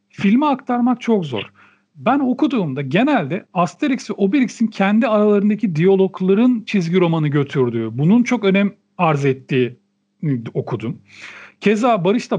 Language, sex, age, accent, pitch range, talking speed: Turkish, male, 40-59, native, 170-230 Hz, 115 wpm